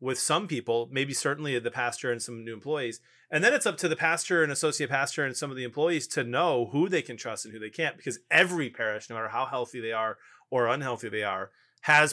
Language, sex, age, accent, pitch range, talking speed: English, male, 30-49, American, 120-150 Hz, 245 wpm